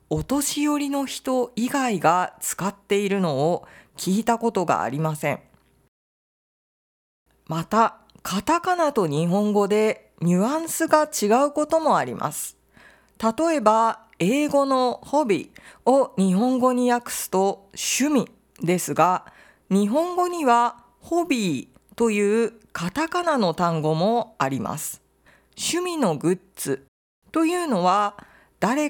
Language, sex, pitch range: Japanese, female, 185-280 Hz